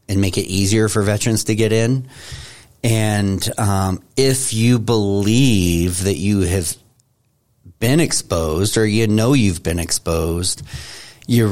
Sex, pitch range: male, 95-115 Hz